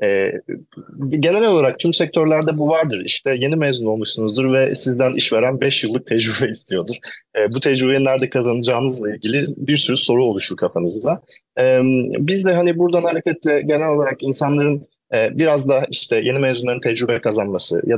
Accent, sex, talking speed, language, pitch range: native, male, 145 wpm, Turkish, 115-145 Hz